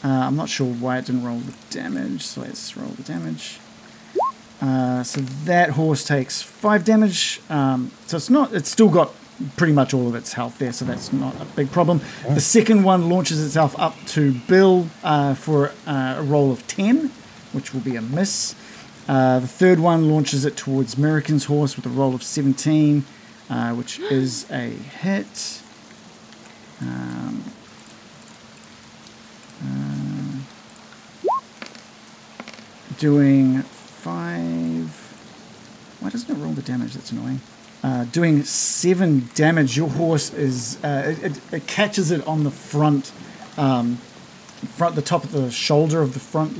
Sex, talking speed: male, 150 wpm